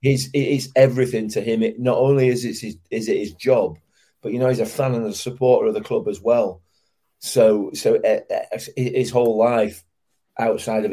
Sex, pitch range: male, 100-130 Hz